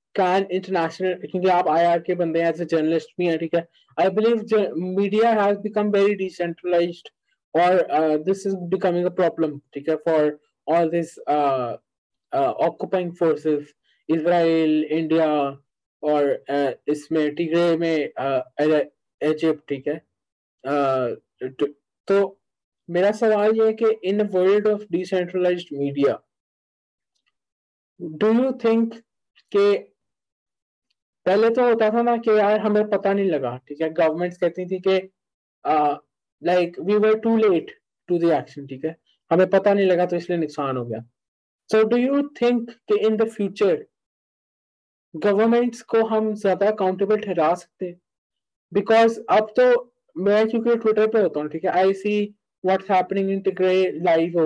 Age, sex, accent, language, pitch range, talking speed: 20-39, male, Indian, English, 160-210 Hz, 85 wpm